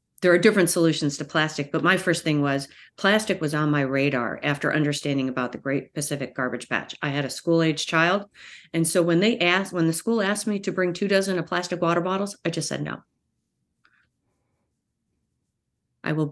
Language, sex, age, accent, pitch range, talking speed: English, female, 40-59, American, 145-170 Hz, 195 wpm